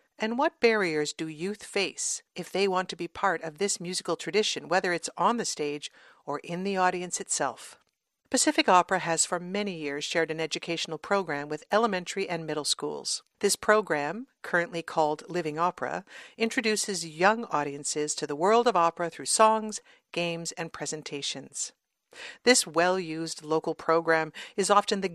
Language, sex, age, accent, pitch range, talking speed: English, female, 50-69, American, 155-215 Hz, 160 wpm